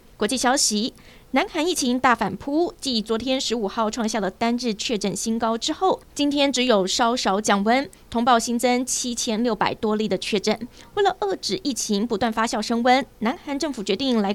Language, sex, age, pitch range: Chinese, female, 20-39, 215-270 Hz